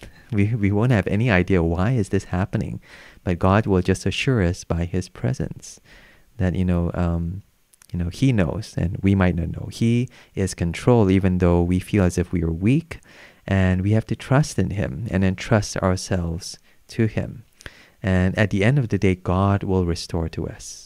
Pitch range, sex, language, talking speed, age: 90-110 Hz, male, English, 195 wpm, 30-49